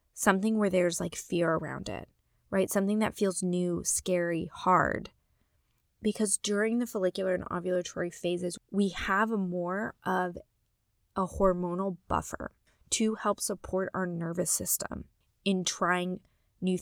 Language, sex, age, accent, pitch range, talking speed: English, female, 20-39, American, 175-205 Hz, 130 wpm